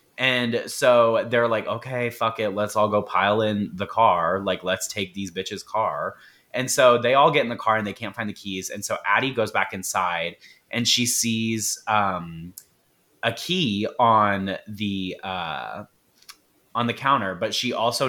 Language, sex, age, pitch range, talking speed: English, male, 30-49, 95-115 Hz, 180 wpm